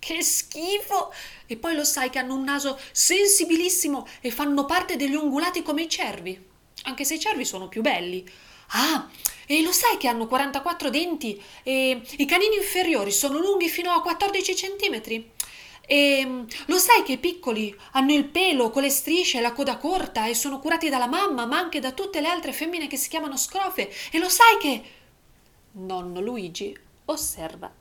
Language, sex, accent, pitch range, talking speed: Italian, female, native, 200-310 Hz, 180 wpm